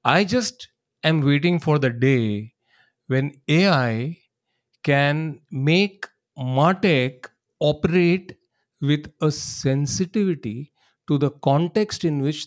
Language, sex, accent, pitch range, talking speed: English, male, Indian, 135-175 Hz, 100 wpm